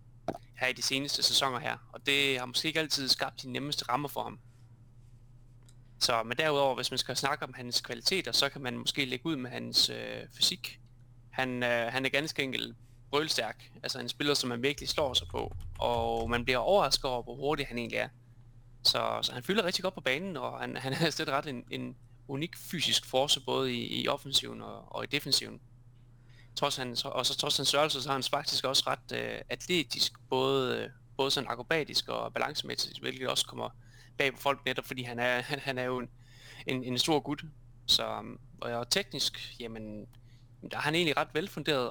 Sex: male